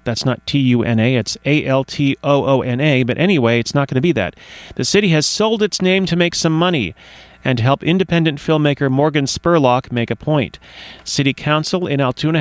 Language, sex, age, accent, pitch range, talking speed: English, male, 40-59, American, 130-160 Hz, 175 wpm